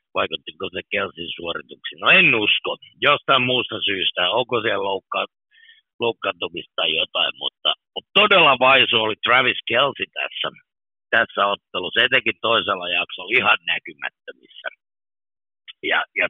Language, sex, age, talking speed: Finnish, male, 60-79, 120 wpm